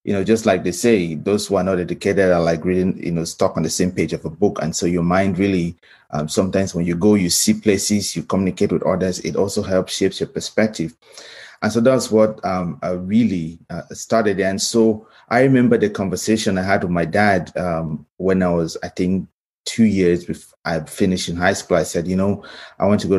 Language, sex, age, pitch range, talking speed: English, male, 30-49, 85-105 Hz, 230 wpm